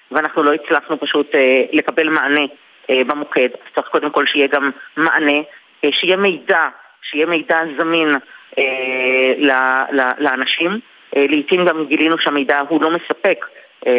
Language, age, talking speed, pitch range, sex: Hebrew, 30-49, 150 wpm, 145-170 Hz, female